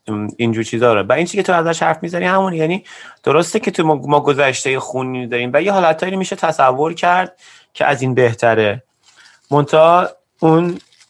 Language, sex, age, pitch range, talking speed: Persian, male, 30-49, 120-160 Hz, 175 wpm